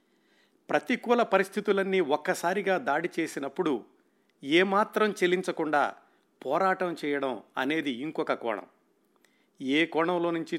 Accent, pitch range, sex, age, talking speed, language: native, 145-185 Hz, male, 50-69, 85 wpm, Telugu